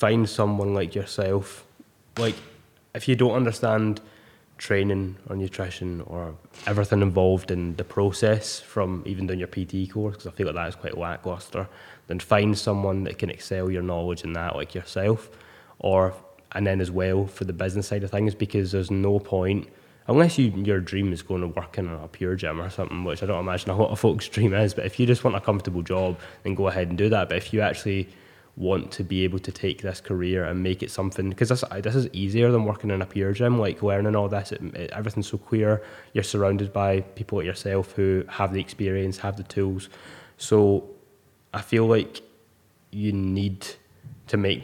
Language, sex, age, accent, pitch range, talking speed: English, male, 10-29, British, 95-105 Hz, 205 wpm